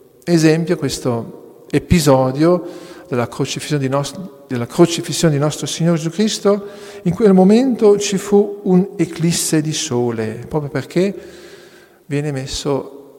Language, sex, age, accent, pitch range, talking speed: Italian, male, 50-69, native, 130-175 Hz, 110 wpm